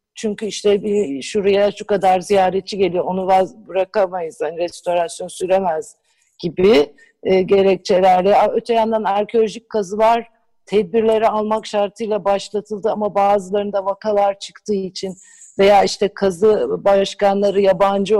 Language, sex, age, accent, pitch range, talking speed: Turkish, female, 60-79, native, 190-225 Hz, 115 wpm